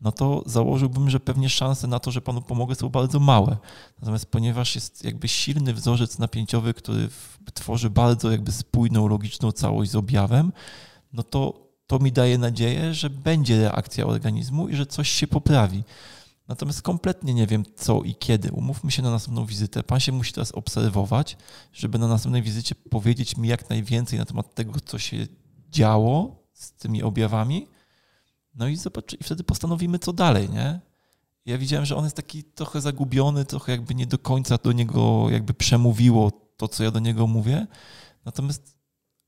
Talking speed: 170 wpm